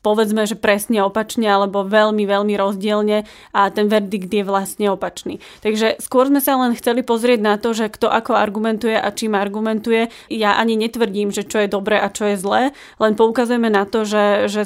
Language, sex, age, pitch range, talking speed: Slovak, female, 20-39, 205-225 Hz, 190 wpm